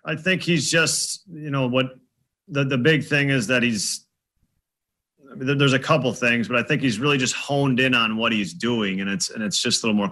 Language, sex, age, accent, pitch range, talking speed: English, male, 40-59, American, 110-135 Hz, 235 wpm